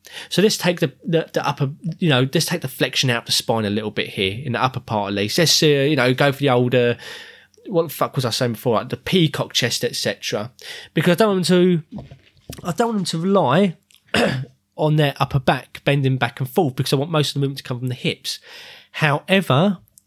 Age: 20-39